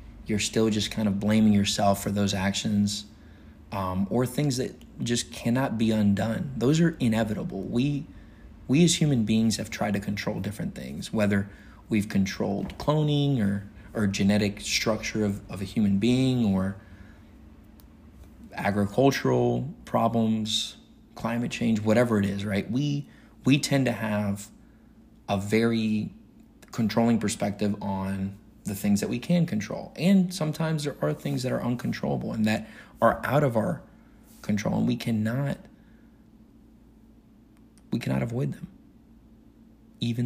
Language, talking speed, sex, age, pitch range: English, 140 wpm, male, 30-49, 100-120 Hz